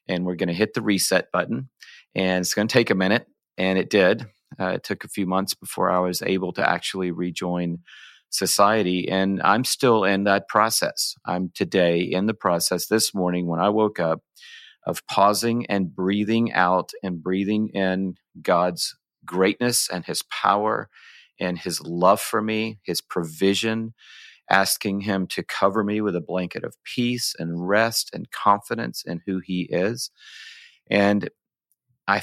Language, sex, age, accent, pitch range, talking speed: English, male, 40-59, American, 90-105 Hz, 165 wpm